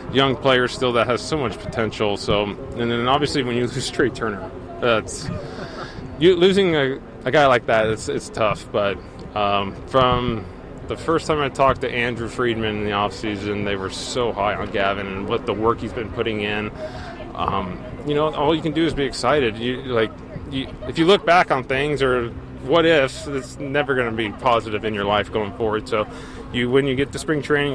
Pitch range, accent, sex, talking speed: 110-145 Hz, American, male, 210 wpm